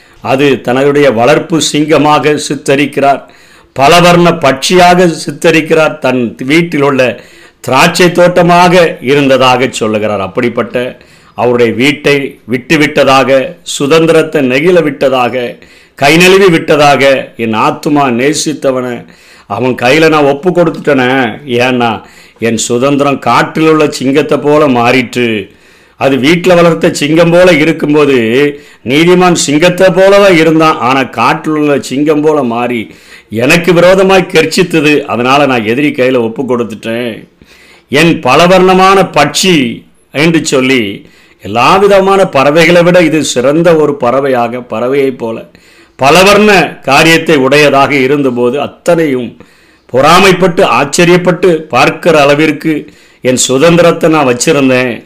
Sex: male